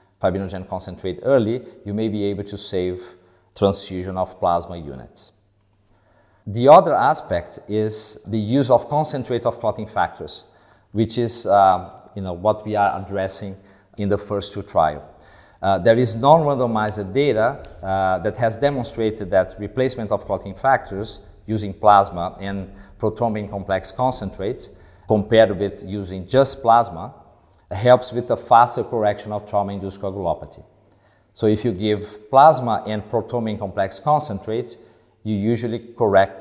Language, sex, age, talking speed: English, male, 50-69, 135 wpm